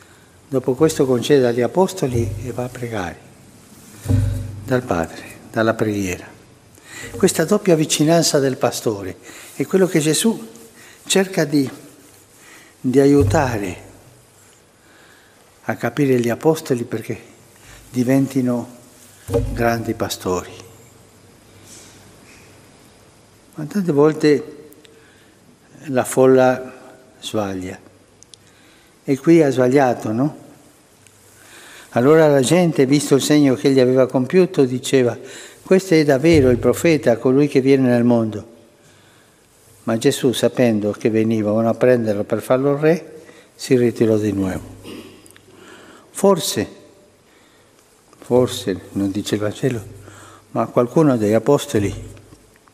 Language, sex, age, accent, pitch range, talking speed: Italian, male, 60-79, native, 110-140 Hz, 100 wpm